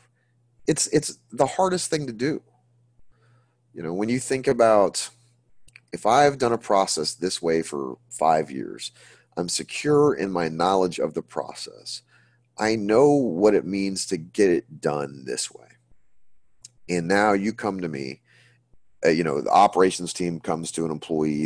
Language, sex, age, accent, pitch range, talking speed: English, male, 30-49, American, 80-120 Hz, 160 wpm